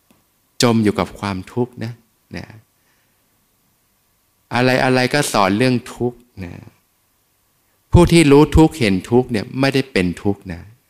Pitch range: 100-125 Hz